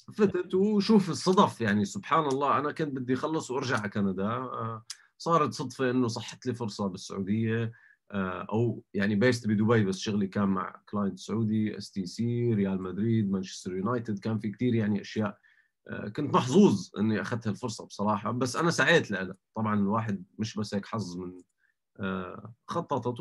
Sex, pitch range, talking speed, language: male, 100-130 Hz, 155 wpm, Arabic